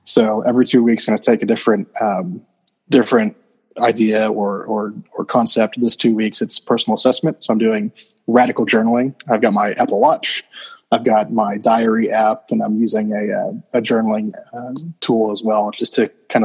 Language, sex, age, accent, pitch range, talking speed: English, male, 20-39, American, 110-125 Hz, 190 wpm